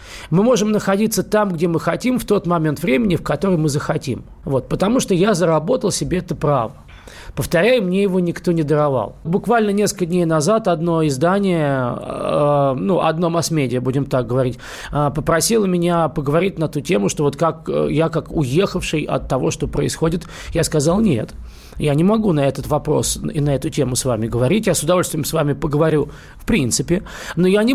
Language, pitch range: Russian, 150-200 Hz